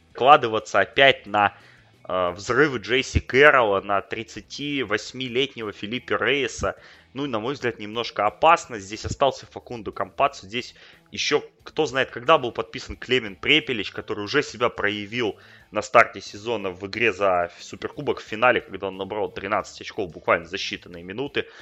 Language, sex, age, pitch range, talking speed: Russian, male, 20-39, 100-130 Hz, 145 wpm